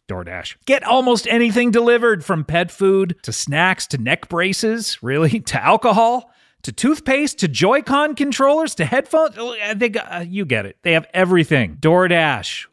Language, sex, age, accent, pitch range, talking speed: English, male, 40-59, American, 150-220 Hz, 160 wpm